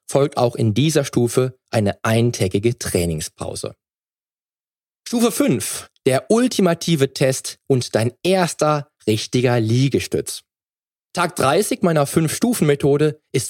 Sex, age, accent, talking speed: male, 20-39, German, 100 wpm